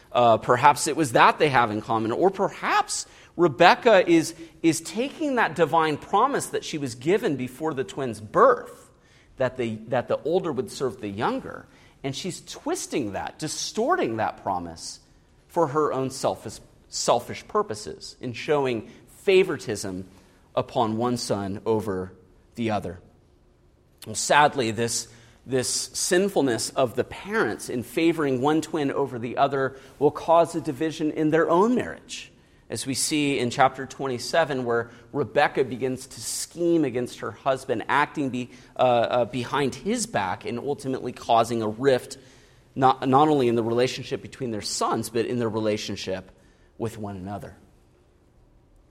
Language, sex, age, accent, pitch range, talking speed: English, male, 40-59, American, 115-155 Hz, 150 wpm